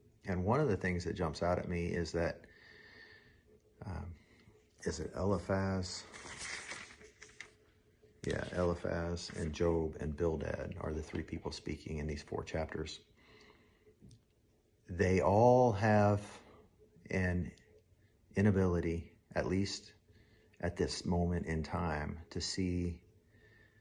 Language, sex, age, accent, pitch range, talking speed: English, male, 40-59, American, 85-105 Hz, 115 wpm